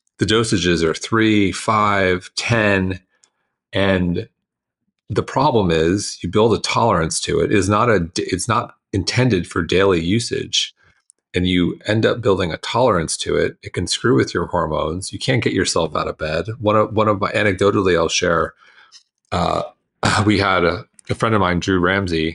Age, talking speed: 30-49, 175 wpm